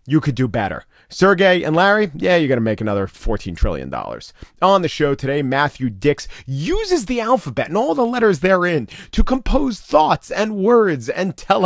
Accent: American